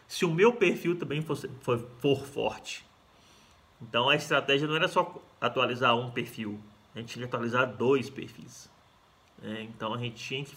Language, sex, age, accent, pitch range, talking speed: Portuguese, male, 20-39, Brazilian, 120-170 Hz, 160 wpm